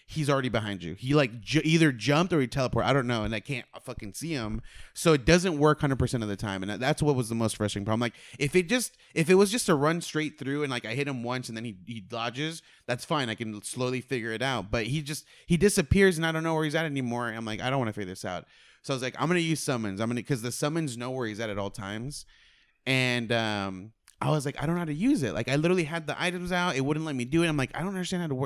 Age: 20-39